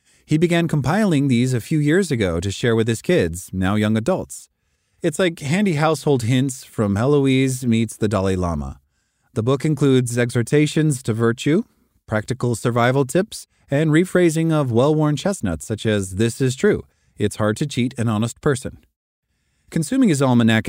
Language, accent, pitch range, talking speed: English, American, 105-145 Hz, 160 wpm